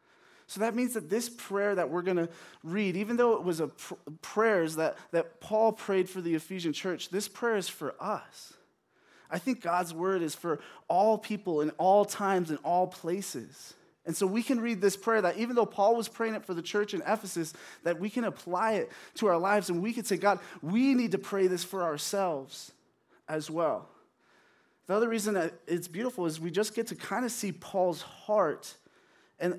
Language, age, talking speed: English, 20-39, 210 wpm